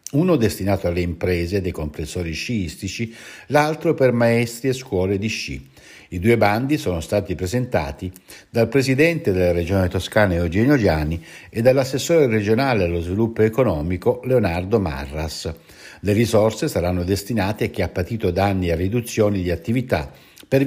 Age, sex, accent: 60-79, male, native